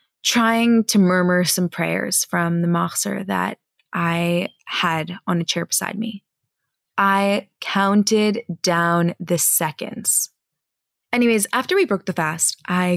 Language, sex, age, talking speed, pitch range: English, female, 20-39, 130 wpm, 175-230 Hz